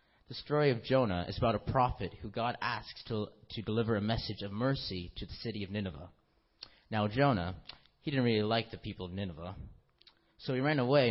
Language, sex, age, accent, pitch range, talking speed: English, male, 30-49, American, 100-125 Hz, 200 wpm